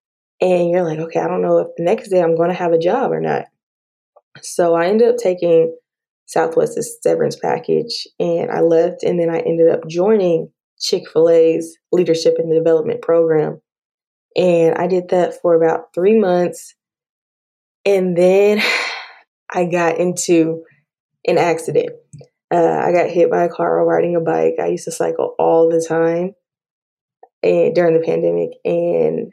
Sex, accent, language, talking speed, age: female, American, English, 160 wpm, 20-39